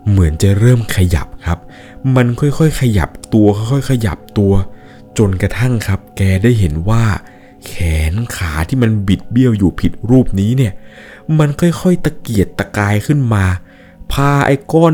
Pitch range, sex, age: 95-135 Hz, male, 20-39